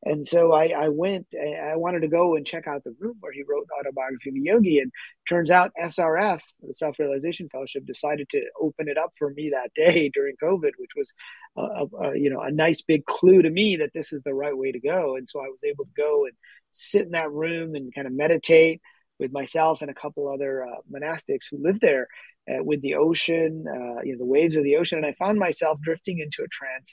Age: 30-49